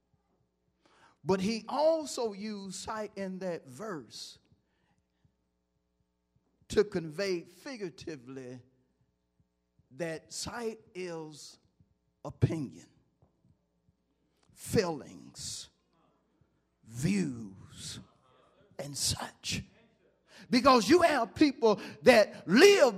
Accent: American